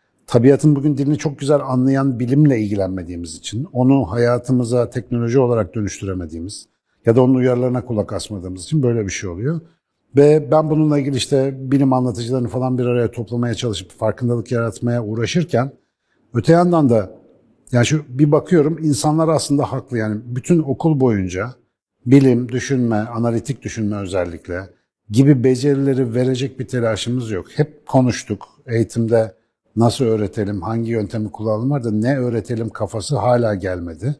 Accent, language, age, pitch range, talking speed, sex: native, Turkish, 50-69, 110-140 Hz, 140 wpm, male